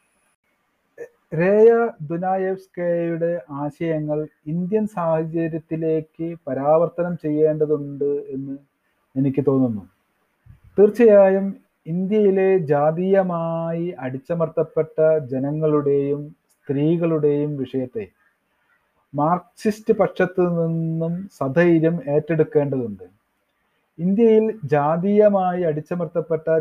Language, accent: Malayalam, native